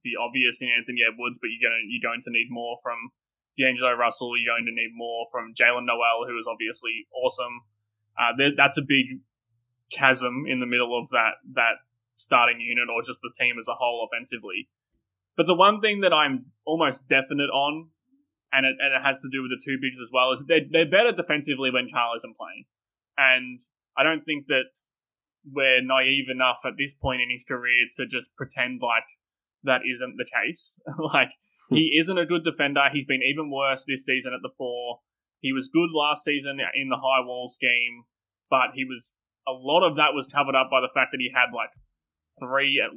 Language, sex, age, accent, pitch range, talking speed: English, male, 20-39, Australian, 120-135 Hz, 205 wpm